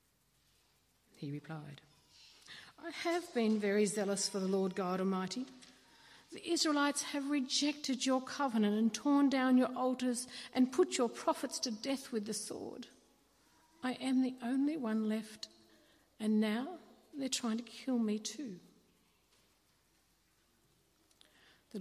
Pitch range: 185-250 Hz